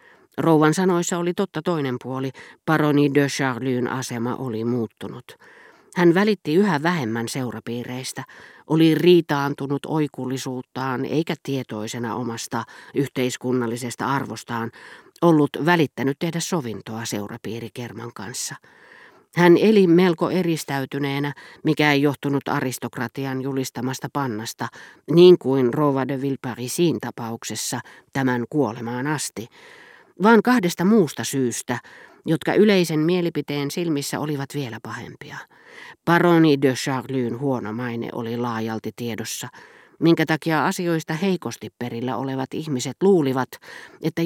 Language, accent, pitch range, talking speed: Finnish, native, 125-170 Hz, 105 wpm